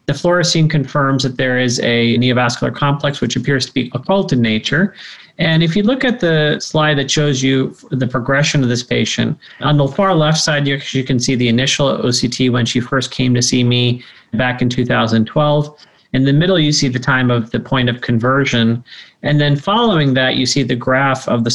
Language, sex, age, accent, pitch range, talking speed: English, male, 40-59, American, 125-150 Hz, 205 wpm